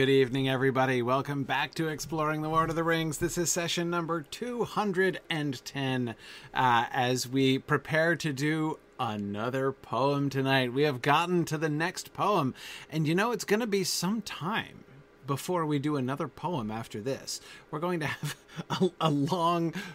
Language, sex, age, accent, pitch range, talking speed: English, male, 30-49, American, 130-170 Hz, 170 wpm